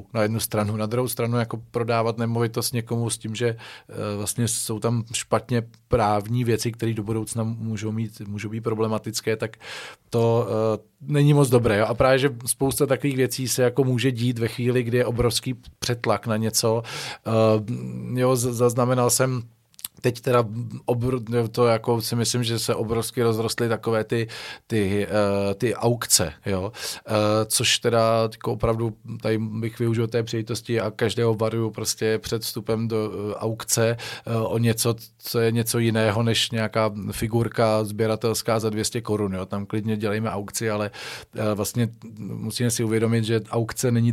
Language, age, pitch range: Czech, 40-59, 110-120 Hz